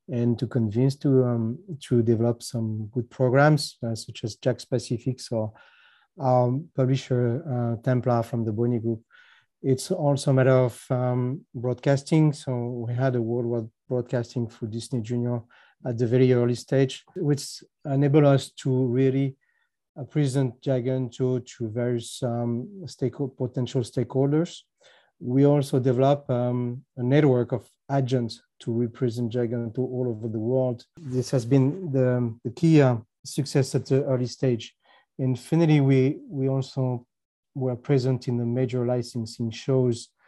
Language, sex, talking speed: English, male, 155 wpm